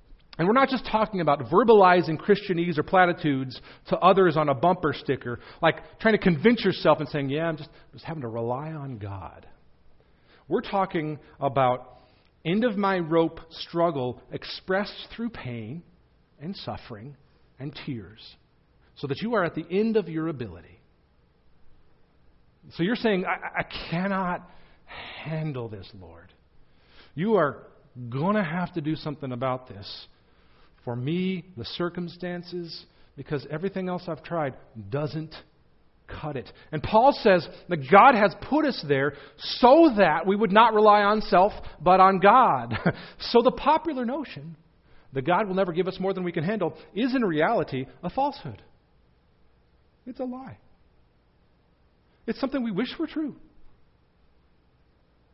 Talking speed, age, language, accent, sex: 150 wpm, 40-59, English, American, male